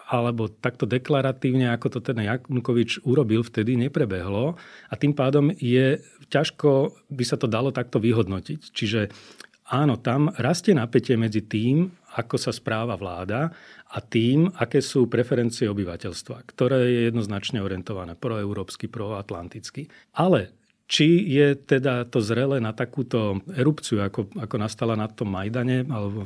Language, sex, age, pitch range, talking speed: Slovak, male, 40-59, 110-140 Hz, 135 wpm